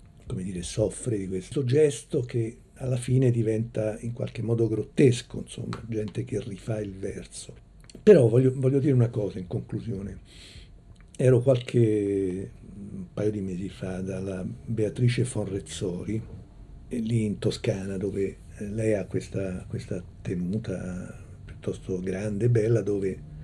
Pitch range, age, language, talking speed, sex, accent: 95-120 Hz, 60-79, Italian, 135 wpm, male, native